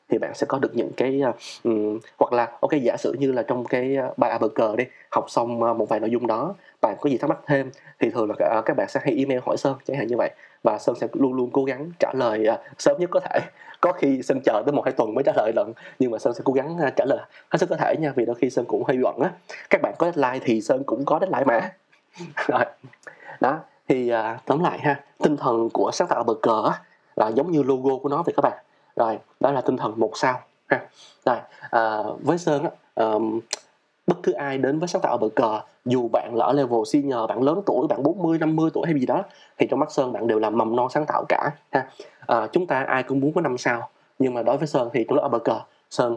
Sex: male